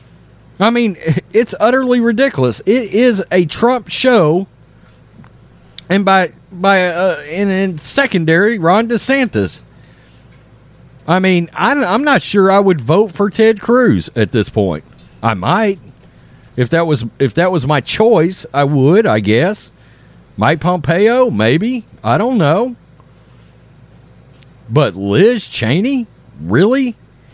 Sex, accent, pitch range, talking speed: male, American, 125-200 Hz, 125 wpm